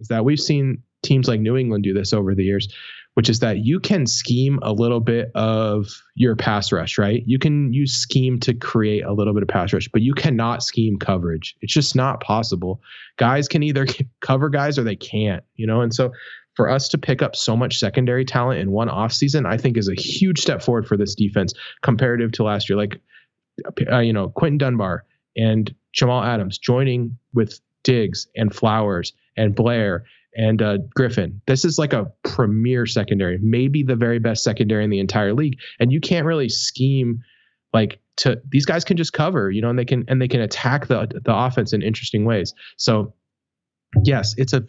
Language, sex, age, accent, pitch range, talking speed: English, male, 20-39, American, 105-130 Hz, 205 wpm